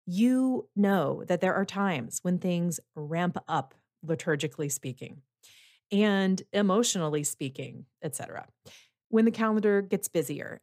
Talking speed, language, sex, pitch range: 125 wpm, English, female, 160-210 Hz